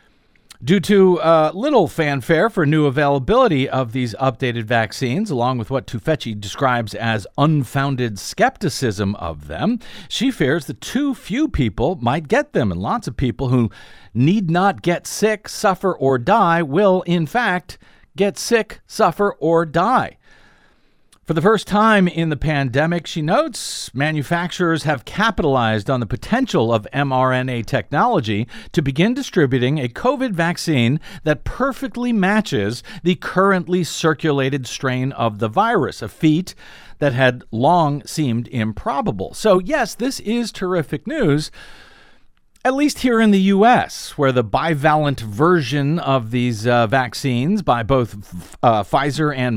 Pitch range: 130-190 Hz